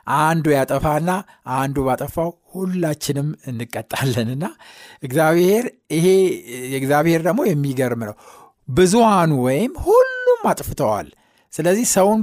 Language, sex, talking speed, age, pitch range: Amharic, male, 90 wpm, 60-79, 130-195 Hz